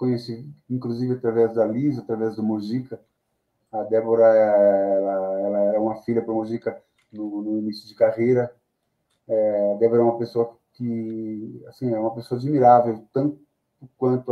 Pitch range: 115-160 Hz